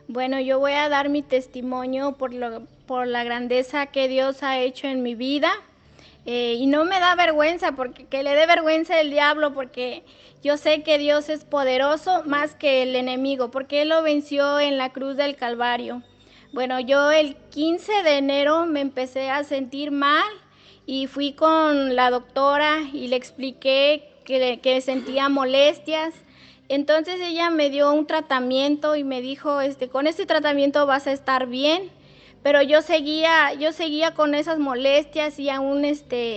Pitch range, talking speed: 265-310 Hz, 170 wpm